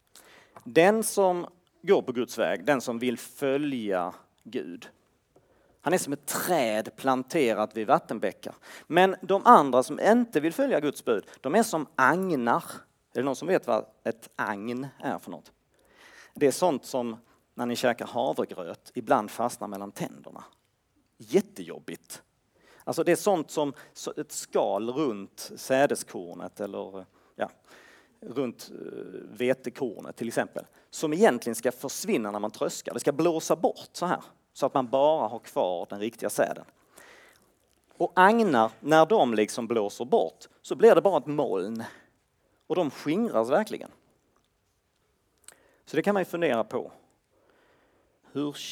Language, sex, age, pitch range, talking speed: Swedish, male, 40-59, 120-180 Hz, 145 wpm